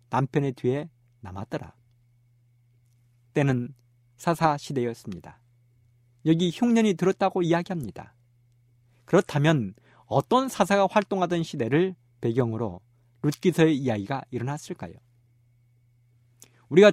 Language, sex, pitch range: Korean, male, 120-165 Hz